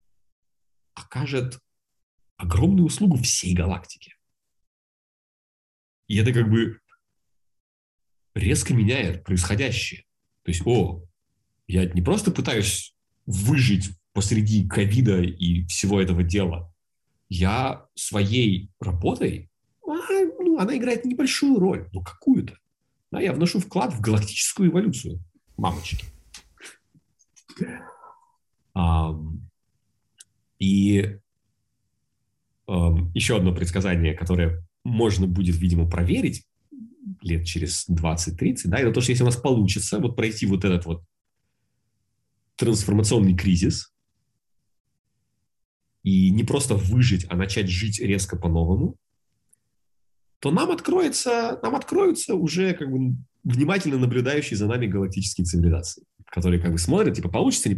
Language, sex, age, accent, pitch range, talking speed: Russian, male, 40-59, native, 90-125 Hz, 105 wpm